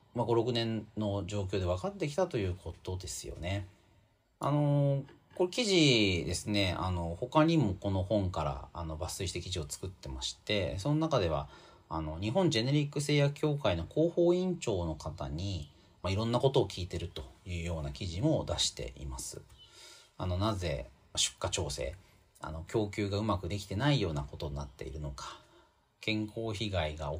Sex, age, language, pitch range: male, 40-59, Japanese, 85-140 Hz